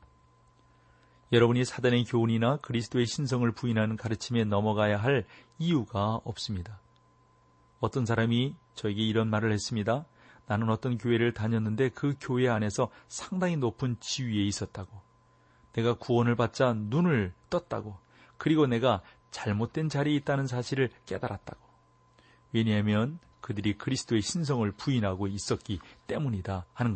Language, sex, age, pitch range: Korean, male, 40-59, 105-130 Hz